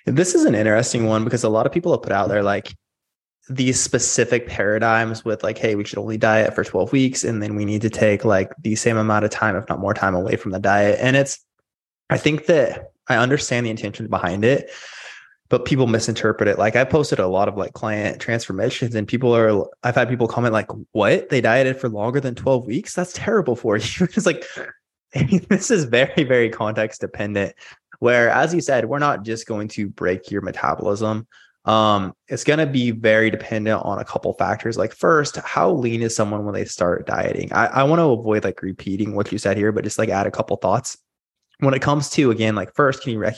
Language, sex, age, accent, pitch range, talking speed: English, male, 20-39, American, 105-130 Hz, 225 wpm